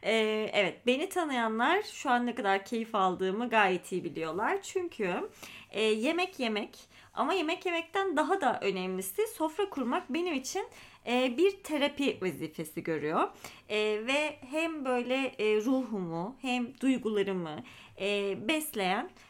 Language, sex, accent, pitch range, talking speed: Turkish, female, native, 210-330 Hz, 130 wpm